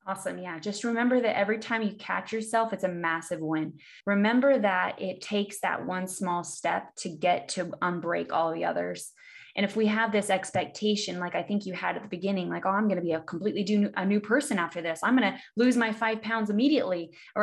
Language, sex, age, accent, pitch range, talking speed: English, female, 20-39, American, 180-215 Hz, 225 wpm